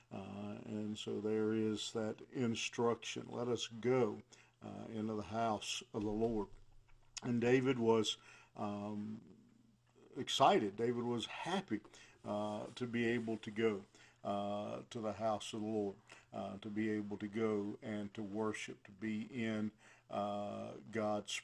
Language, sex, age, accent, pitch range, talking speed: English, male, 50-69, American, 105-120 Hz, 145 wpm